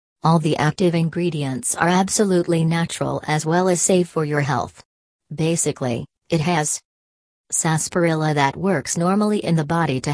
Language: English